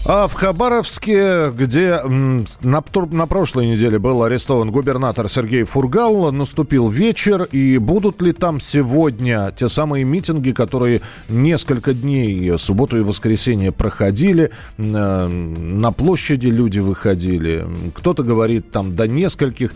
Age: 40-59